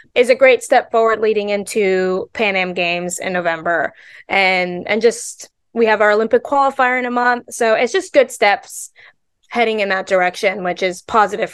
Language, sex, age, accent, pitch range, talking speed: English, female, 20-39, American, 200-250 Hz, 180 wpm